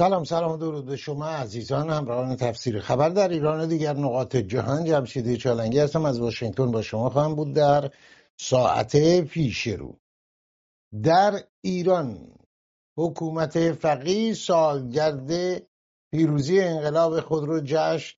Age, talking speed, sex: 60-79, 120 wpm, male